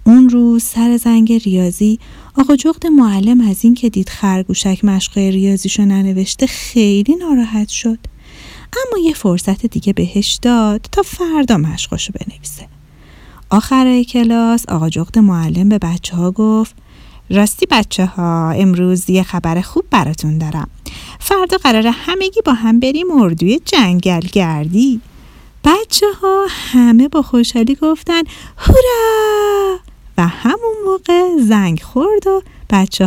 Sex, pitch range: female, 190-260 Hz